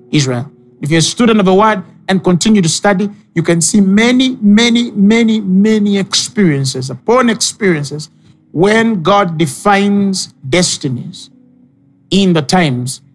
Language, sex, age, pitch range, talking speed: English, male, 50-69, 160-225 Hz, 130 wpm